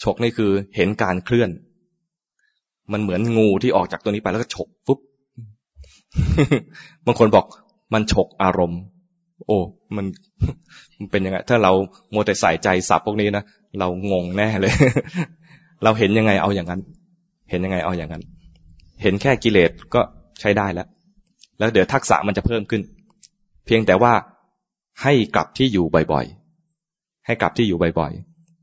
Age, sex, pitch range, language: 20-39, male, 95-120 Hz, English